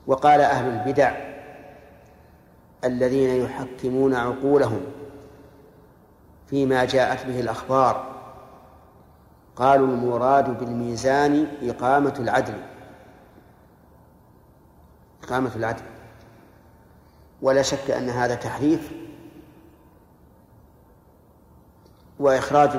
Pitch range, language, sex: 120-145 Hz, Arabic, male